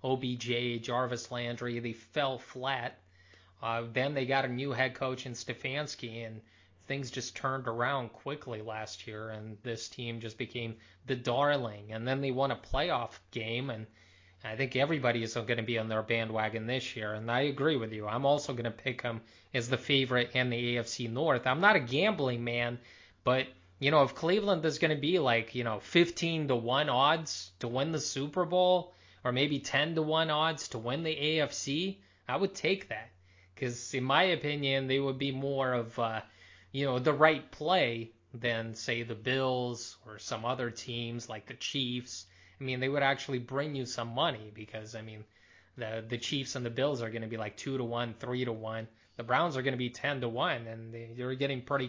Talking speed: 205 wpm